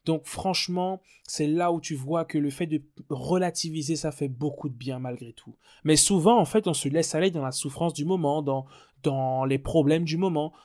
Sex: male